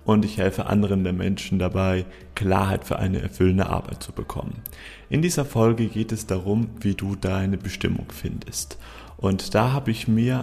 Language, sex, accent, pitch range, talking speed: German, male, German, 100-115 Hz, 175 wpm